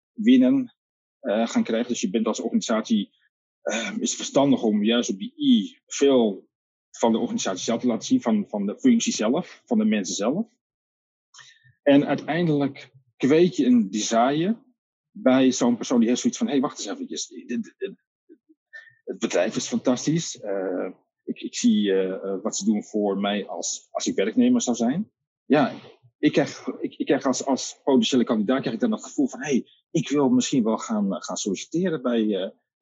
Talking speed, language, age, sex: 170 wpm, Dutch, 40-59, male